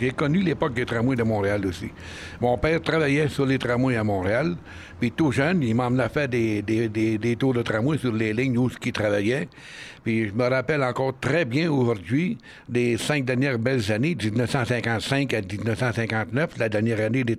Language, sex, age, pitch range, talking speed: French, male, 60-79, 115-145 Hz, 195 wpm